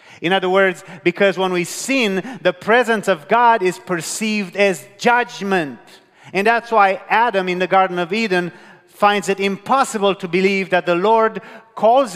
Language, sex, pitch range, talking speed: English, male, 140-200 Hz, 165 wpm